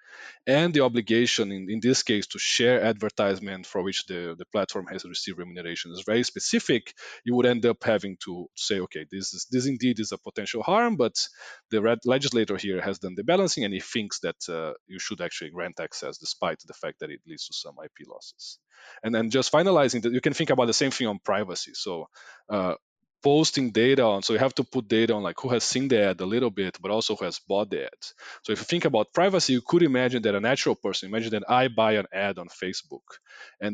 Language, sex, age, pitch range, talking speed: English, male, 20-39, 100-125 Hz, 230 wpm